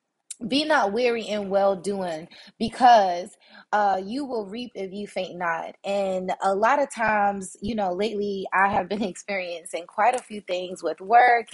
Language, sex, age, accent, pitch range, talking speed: English, female, 20-39, American, 195-245 Hz, 165 wpm